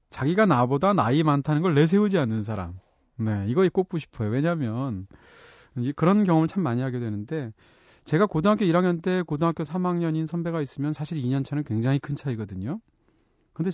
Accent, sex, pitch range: native, male, 120-170 Hz